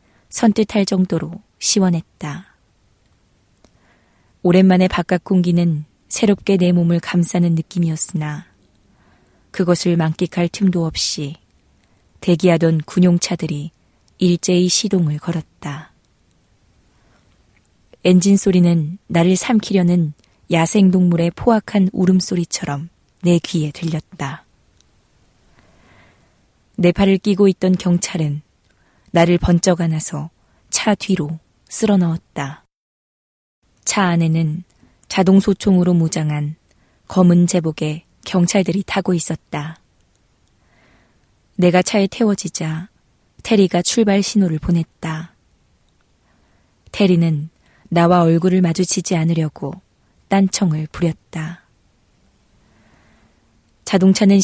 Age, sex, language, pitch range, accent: 20-39, female, Korean, 150-185 Hz, native